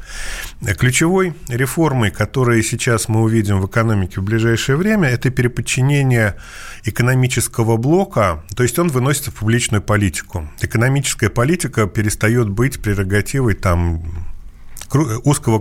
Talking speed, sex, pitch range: 110 wpm, male, 100-125 Hz